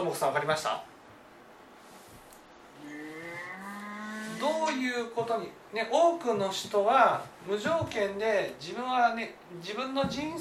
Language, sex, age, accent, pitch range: Japanese, male, 40-59, native, 190-310 Hz